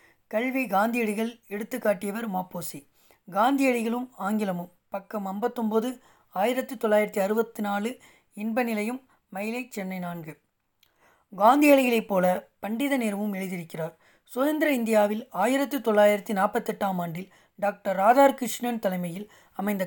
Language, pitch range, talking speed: Tamil, 190-235 Hz, 95 wpm